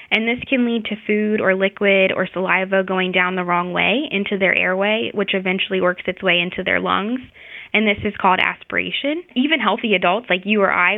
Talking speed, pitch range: 210 wpm, 185-225 Hz